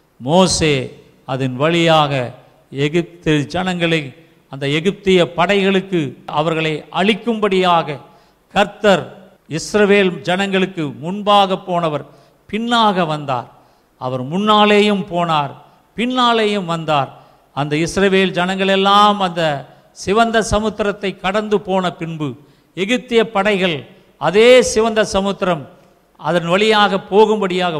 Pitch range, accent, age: 150-200 Hz, native, 50-69